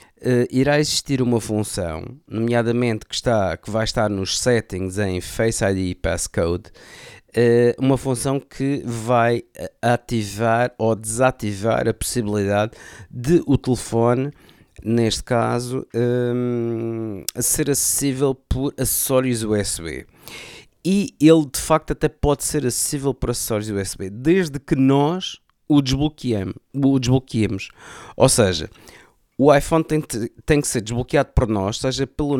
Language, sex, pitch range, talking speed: Portuguese, male, 105-135 Hz, 115 wpm